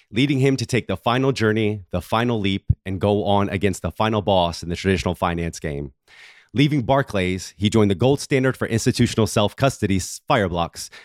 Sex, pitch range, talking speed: male, 100-135 Hz, 180 wpm